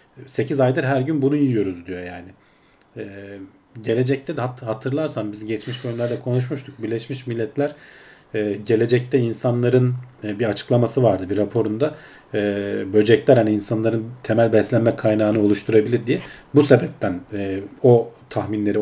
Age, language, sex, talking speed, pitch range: 40-59, Turkish, male, 135 wpm, 110-140 Hz